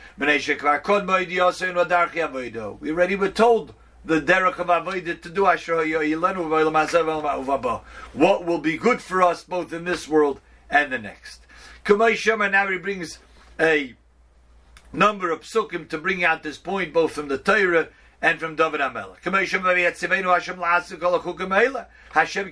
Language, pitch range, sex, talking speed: English, 155-190 Hz, male, 125 wpm